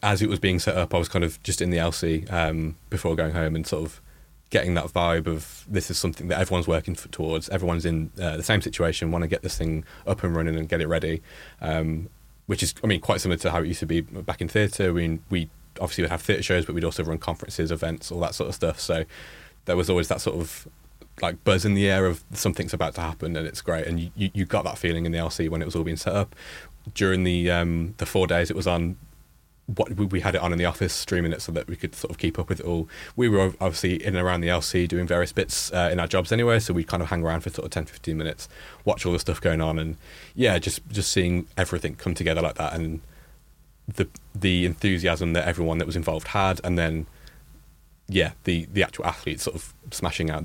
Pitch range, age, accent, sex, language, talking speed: 80-95 Hz, 20-39, British, male, English, 255 wpm